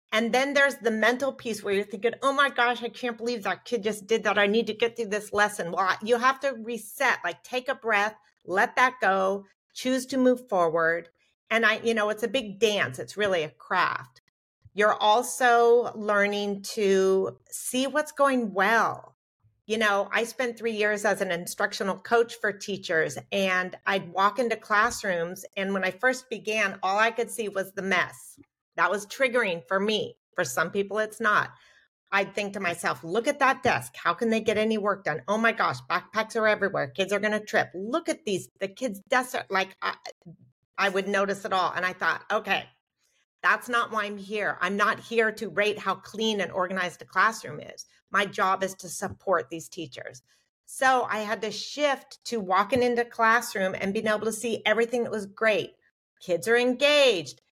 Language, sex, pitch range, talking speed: English, female, 195-235 Hz, 200 wpm